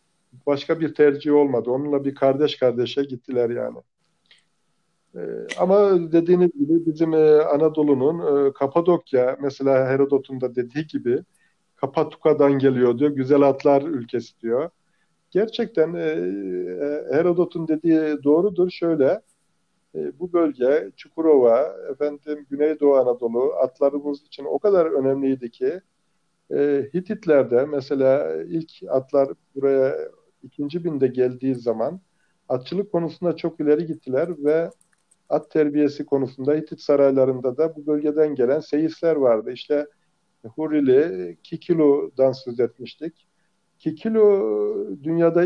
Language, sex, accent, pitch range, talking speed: Turkish, male, native, 135-170 Hz, 110 wpm